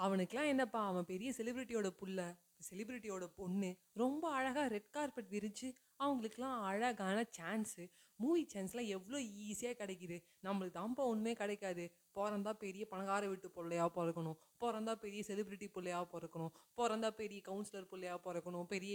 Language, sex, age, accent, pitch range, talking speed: Tamil, female, 20-39, native, 175-225 Hz, 135 wpm